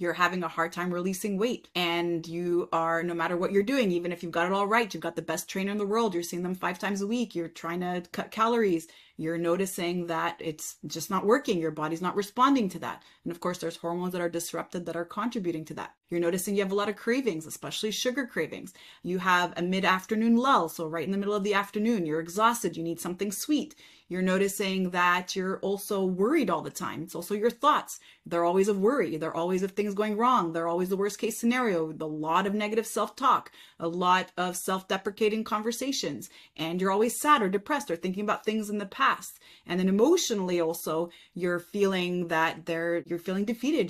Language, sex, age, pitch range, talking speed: English, female, 30-49, 170-210 Hz, 220 wpm